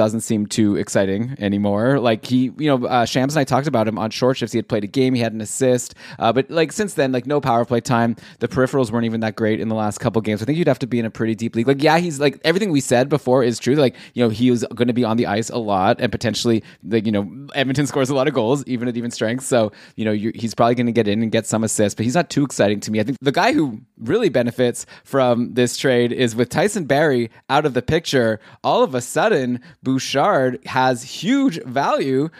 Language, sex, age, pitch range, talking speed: English, male, 20-39, 115-155 Hz, 265 wpm